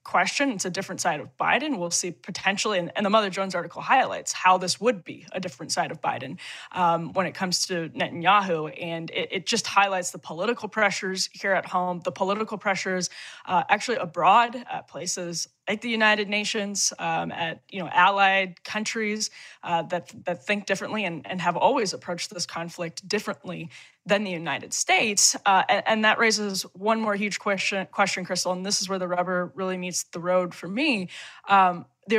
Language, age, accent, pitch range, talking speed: English, 20-39, American, 175-210 Hz, 190 wpm